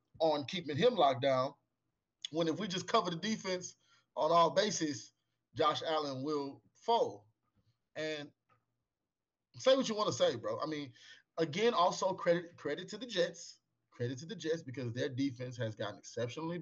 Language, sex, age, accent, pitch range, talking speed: English, male, 30-49, American, 125-165 Hz, 165 wpm